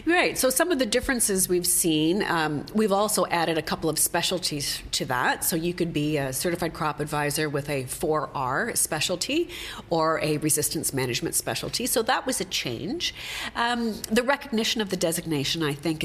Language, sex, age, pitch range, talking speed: English, female, 40-59, 150-195 Hz, 180 wpm